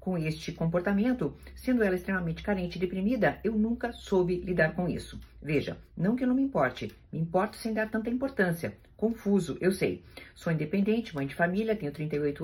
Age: 50-69